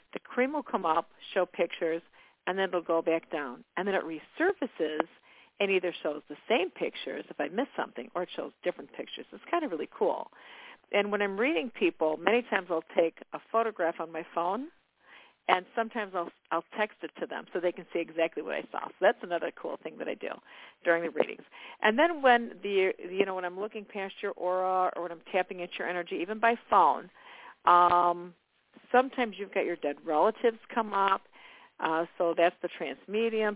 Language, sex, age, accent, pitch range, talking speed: English, female, 50-69, American, 170-230 Hz, 215 wpm